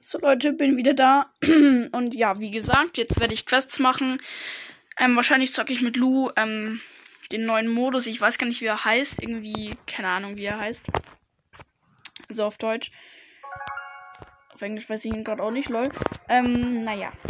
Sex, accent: female, German